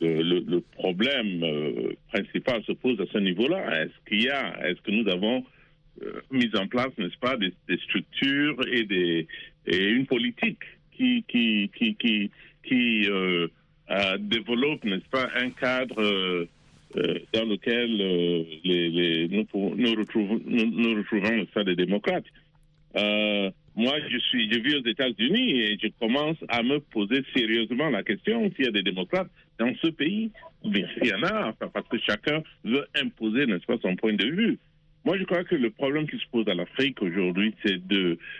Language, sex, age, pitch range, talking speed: French, male, 50-69, 100-155 Hz, 185 wpm